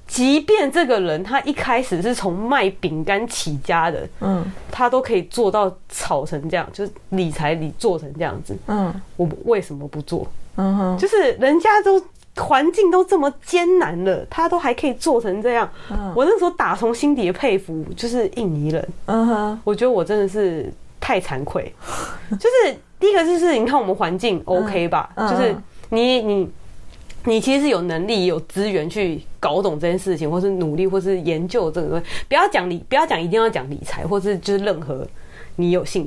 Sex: female